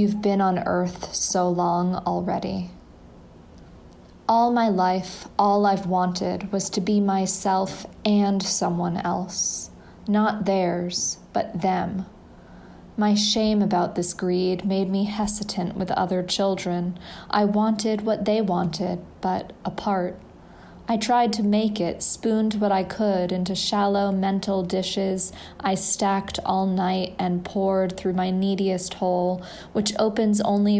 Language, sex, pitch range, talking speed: English, female, 185-205 Hz, 130 wpm